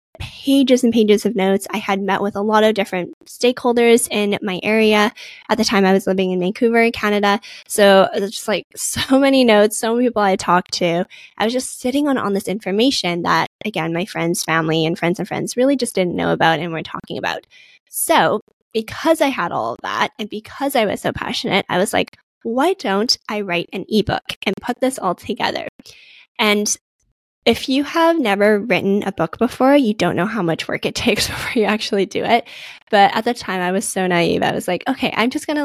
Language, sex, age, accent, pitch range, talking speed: English, female, 10-29, American, 185-240 Hz, 220 wpm